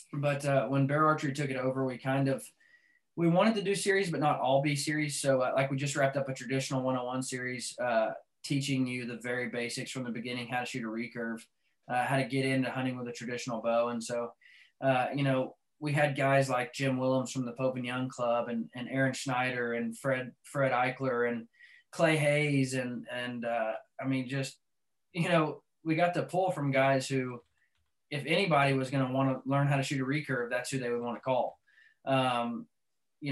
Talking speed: 215 wpm